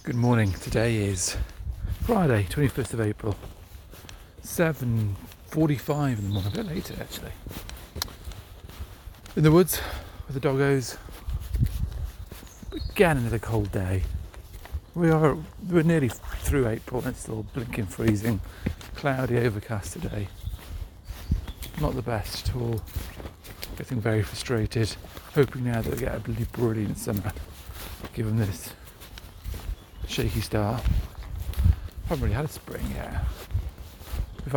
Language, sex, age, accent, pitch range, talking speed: English, male, 40-59, British, 85-115 Hz, 115 wpm